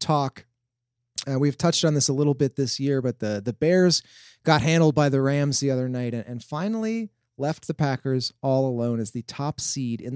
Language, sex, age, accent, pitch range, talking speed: English, male, 30-49, American, 120-150 Hz, 215 wpm